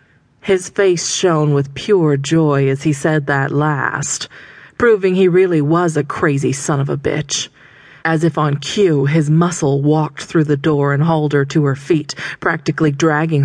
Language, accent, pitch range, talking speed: English, American, 145-170 Hz, 175 wpm